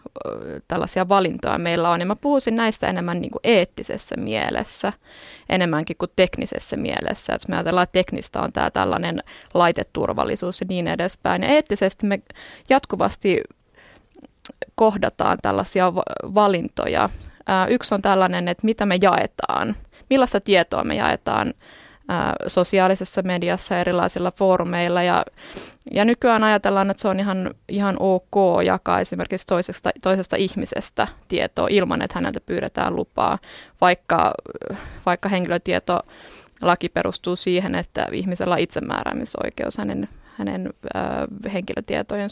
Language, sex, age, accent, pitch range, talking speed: Finnish, female, 20-39, native, 180-205 Hz, 115 wpm